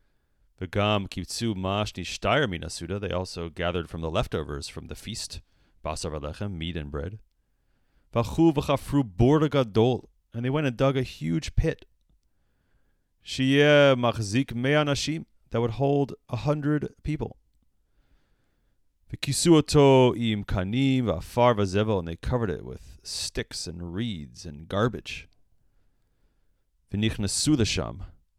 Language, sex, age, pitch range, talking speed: English, male, 30-49, 85-115 Hz, 85 wpm